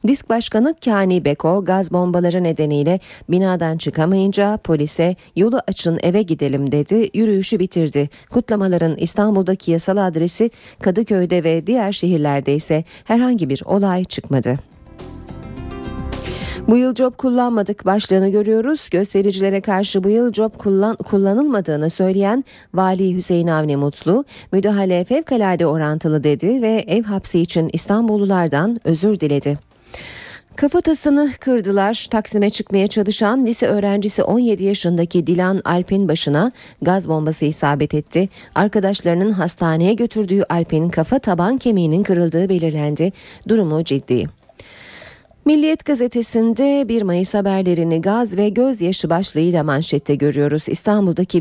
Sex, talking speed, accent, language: female, 115 wpm, native, Turkish